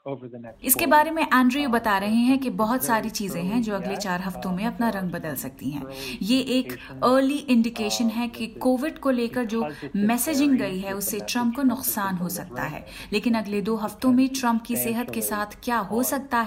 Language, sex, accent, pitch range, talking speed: Hindi, female, native, 200-250 Hz, 200 wpm